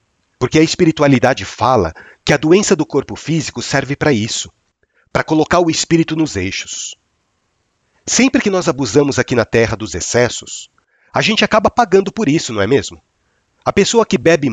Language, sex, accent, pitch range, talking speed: Portuguese, male, Brazilian, 125-180 Hz, 170 wpm